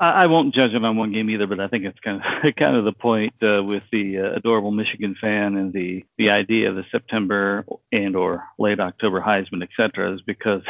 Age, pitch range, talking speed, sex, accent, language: 50-69, 100-120 Hz, 230 wpm, male, American, English